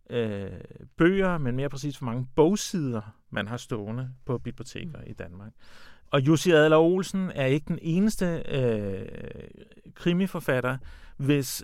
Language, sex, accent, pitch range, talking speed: Danish, male, native, 125-165 Hz, 130 wpm